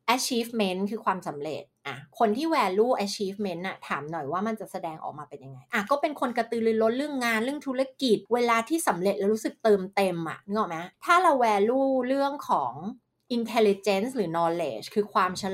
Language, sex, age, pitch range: Thai, female, 20-39, 185-245 Hz